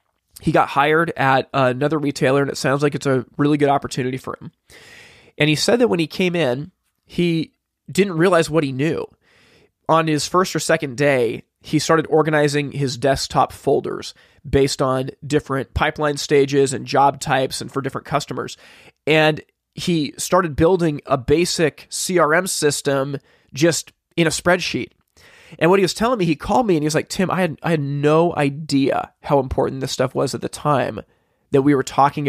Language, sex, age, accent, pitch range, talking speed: English, male, 20-39, American, 140-165 Hz, 185 wpm